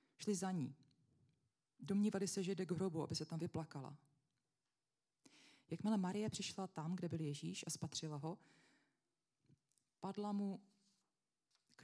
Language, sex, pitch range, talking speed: Czech, female, 145-190 Hz, 130 wpm